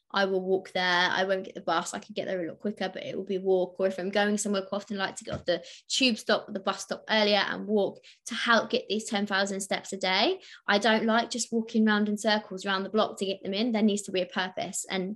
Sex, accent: female, British